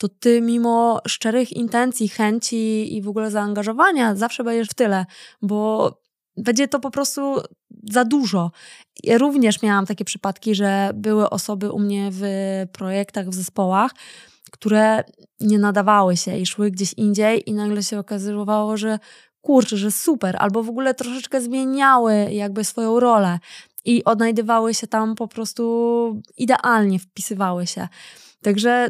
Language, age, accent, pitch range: Polish, 20-39, native, 200-230 Hz